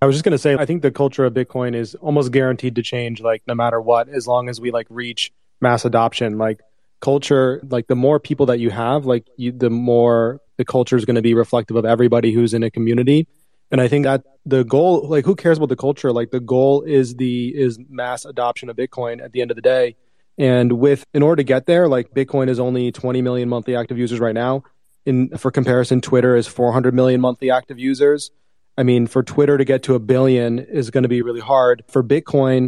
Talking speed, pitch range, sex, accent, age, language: 235 wpm, 120-140 Hz, male, American, 20-39, English